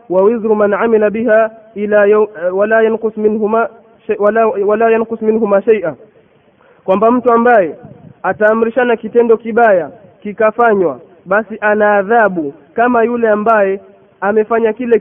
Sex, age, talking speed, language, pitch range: male, 20-39, 115 wpm, Swahili, 210-230 Hz